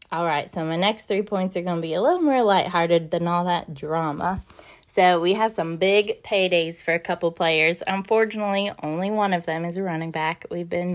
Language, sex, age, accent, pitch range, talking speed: English, female, 20-39, American, 170-205 Hz, 220 wpm